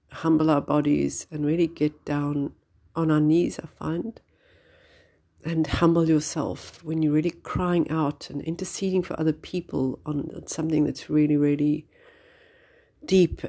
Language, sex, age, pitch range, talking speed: English, female, 50-69, 145-175 Hz, 140 wpm